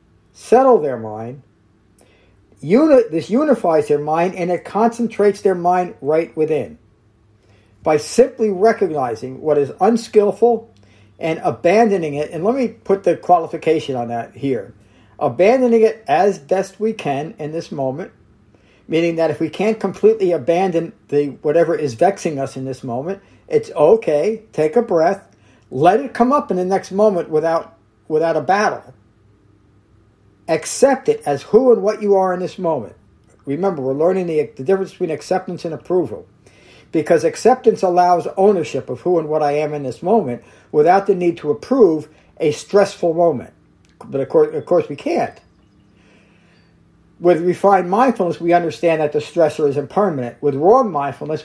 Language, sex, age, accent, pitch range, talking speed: English, male, 50-69, American, 140-195 Hz, 155 wpm